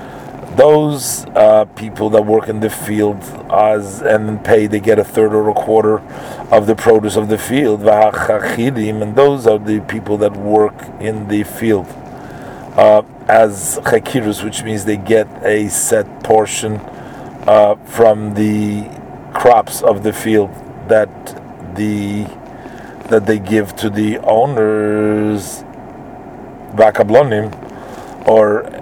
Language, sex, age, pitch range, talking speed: English, male, 40-59, 105-110 Hz, 125 wpm